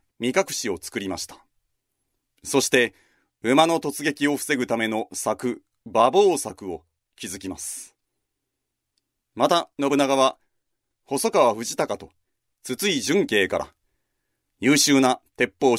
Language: Japanese